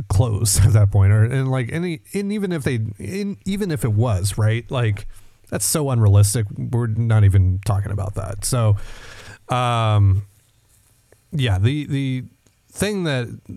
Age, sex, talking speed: 30-49, male, 155 wpm